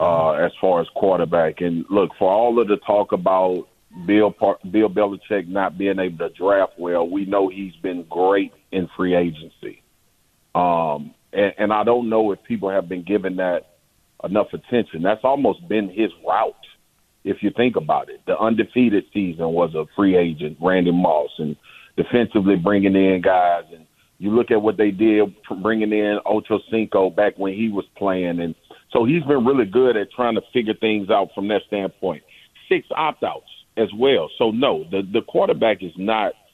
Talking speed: 180 wpm